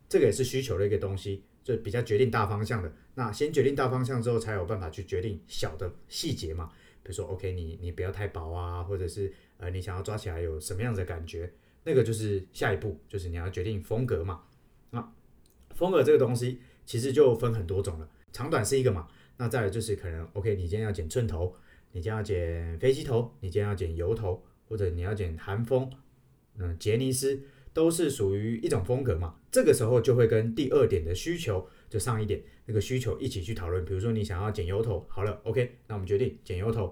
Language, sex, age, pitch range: Chinese, male, 30-49, 90-125 Hz